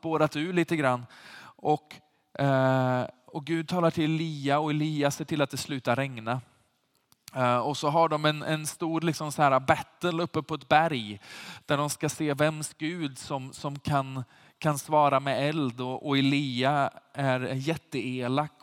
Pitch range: 125-155 Hz